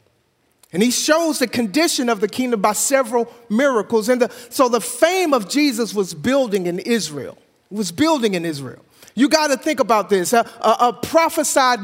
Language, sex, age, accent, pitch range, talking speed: English, male, 50-69, American, 225-280 Hz, 185 wpm